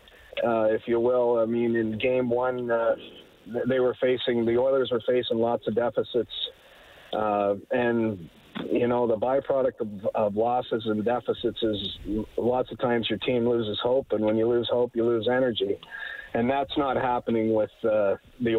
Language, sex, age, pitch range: English, male, 50-69, 110-125 Hz